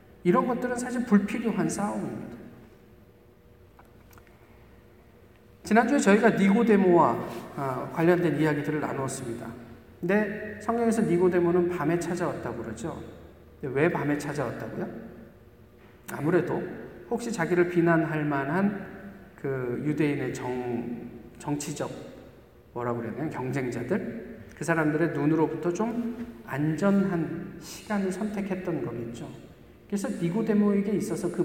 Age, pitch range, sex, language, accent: 40-59, 125-195 Hz, male, Korean, native